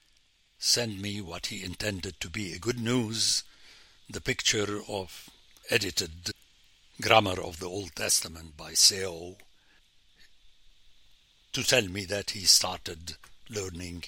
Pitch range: 90-125 Hz